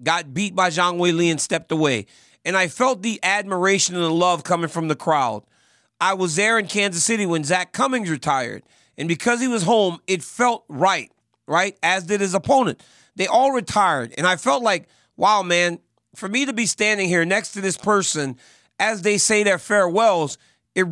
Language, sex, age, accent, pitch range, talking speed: English, male, 40-59, American, 175-225 Hz, 195 wpm